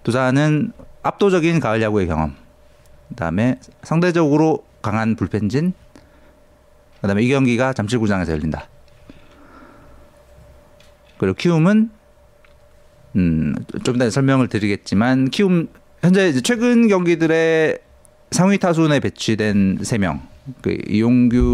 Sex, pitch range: male, 95-150 Hz